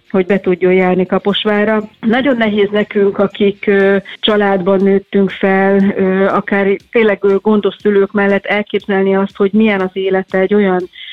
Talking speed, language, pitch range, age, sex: 135 wpm, Hungarian, 195-215 Hz, 30-49, female